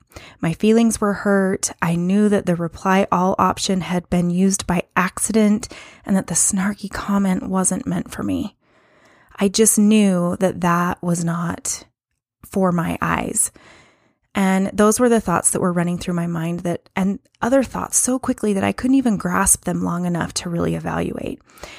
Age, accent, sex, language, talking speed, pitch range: 20-39, American, female, English, 175 wpm, 180-220 Hz